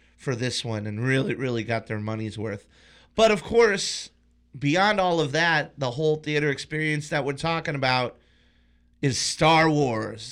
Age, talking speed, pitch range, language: 30-49, 165 wpm, 120-155 Hz, English